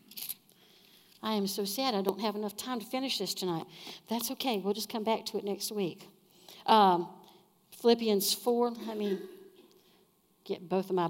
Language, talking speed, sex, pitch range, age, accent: English, 175 wpm, female, 185-240 Hz, 60-79, American